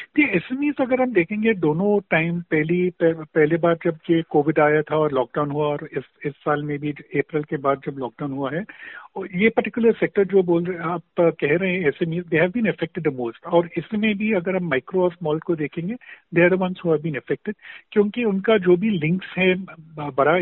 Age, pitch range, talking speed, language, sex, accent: 50-69, 155-195 Hz, 210 wpm, Hindi, male, native